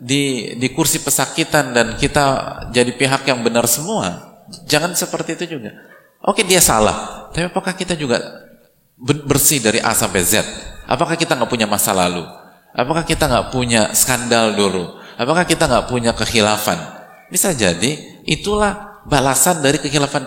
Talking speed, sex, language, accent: 150 wpm, male, Indonesian, native